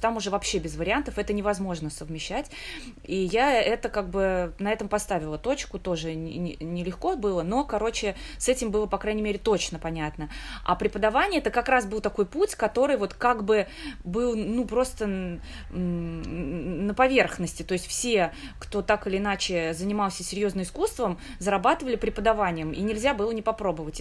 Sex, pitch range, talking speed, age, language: female, 185-240 Hz, 160 wpm, 20-39, Russian